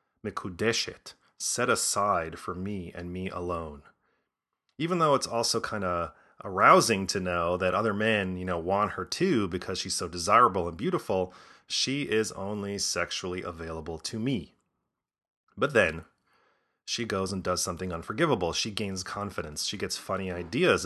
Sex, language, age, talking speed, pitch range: male, English, 30-49, 150 wpm, 90-115 Hz